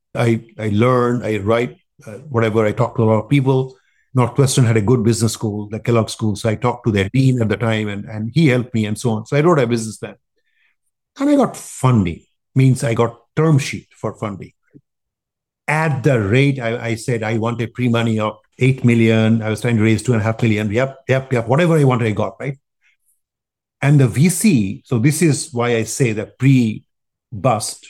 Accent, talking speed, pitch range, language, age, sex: Indian, 205 wpm, 110-135 Hz, English, 50-69, male